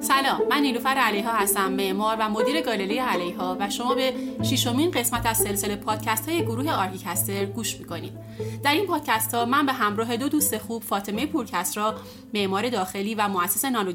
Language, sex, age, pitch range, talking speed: Persian, female, 30-49, 200-265 Hz, 170 wpm